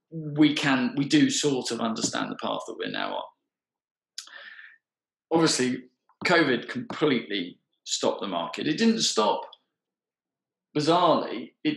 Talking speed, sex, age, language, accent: 120 wpm, male, 40-59, English, British